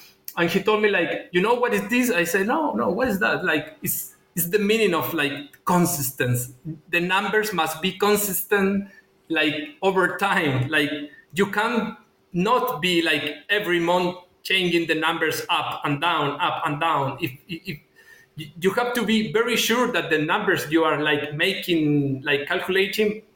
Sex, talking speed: male, 170 wpm